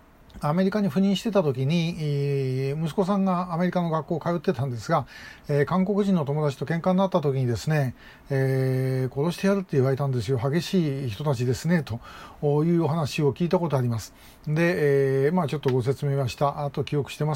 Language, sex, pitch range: Japanese, male, 140-185 Hz